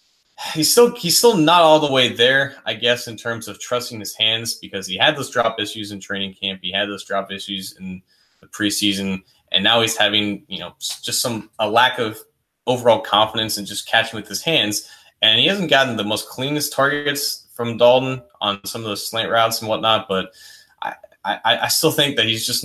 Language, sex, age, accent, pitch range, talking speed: English, male, 20-39, American, 100-120 Hz, 210 wpm